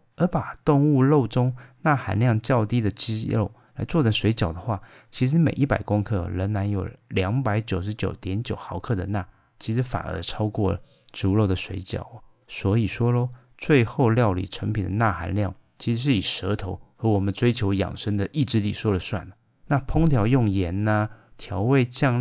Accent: native